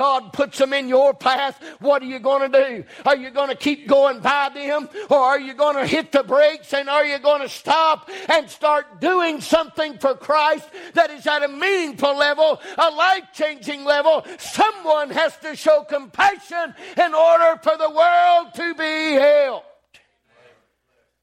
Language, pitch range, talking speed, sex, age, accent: English, 205-295 Hz, 175 wpm, male, 50-69, American